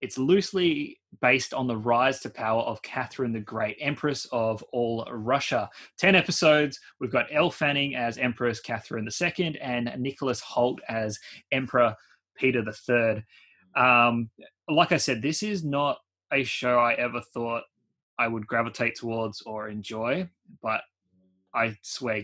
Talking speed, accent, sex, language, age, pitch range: 145 wpm, Australian, male, English, 20-39, 110-140 Hz